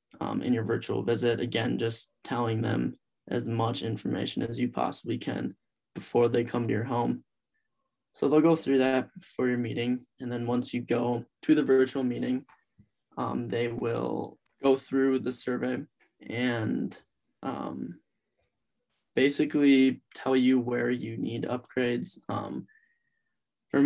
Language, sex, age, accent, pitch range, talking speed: English, male, 10-29, American, 115-130 Hz, 145 wpm